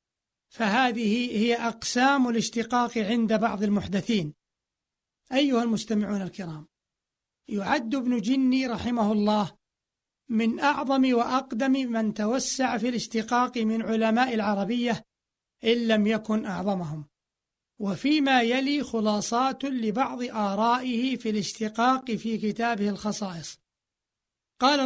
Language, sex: Arabic, male